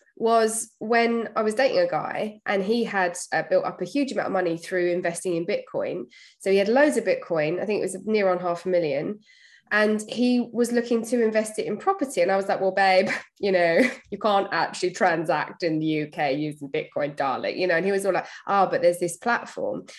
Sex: female